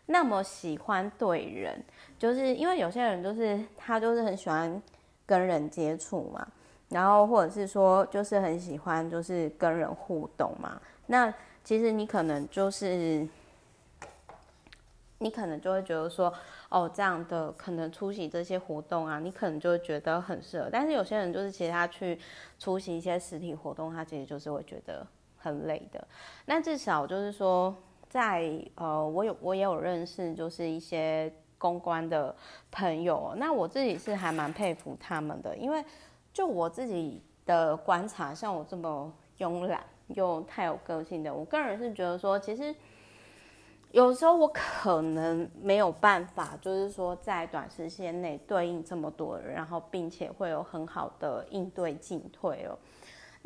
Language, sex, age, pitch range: Chinese, female, 20-39, 165-205 Hz